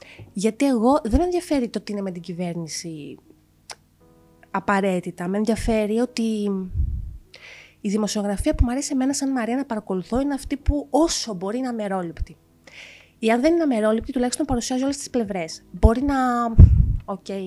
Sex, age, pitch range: female, 30-49, 190-265 Hz